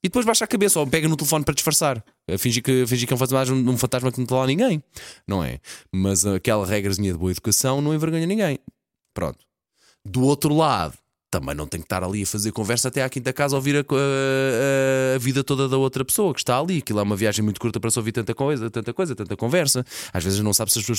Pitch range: 100-145 Hz